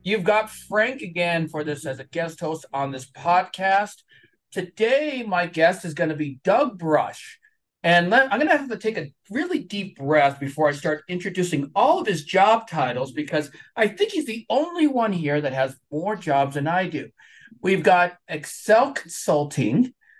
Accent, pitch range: American, 155-220 Hz